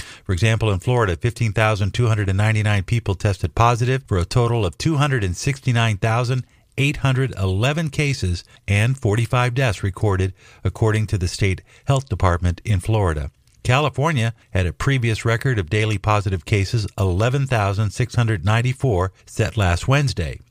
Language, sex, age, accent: English, male, 50-69, American